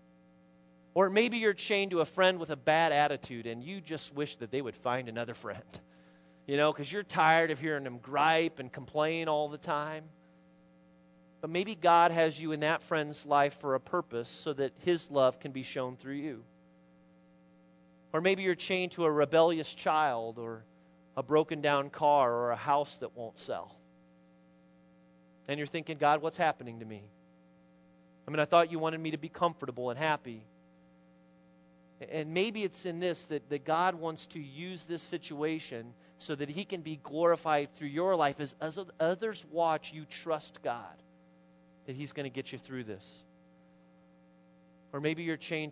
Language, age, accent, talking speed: English, 40-59, American, 180 wpm